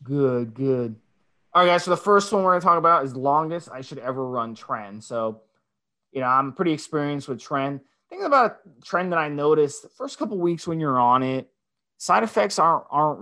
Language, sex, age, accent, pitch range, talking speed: English, male, 30-49, American, 120-160 Hz, 220 wpm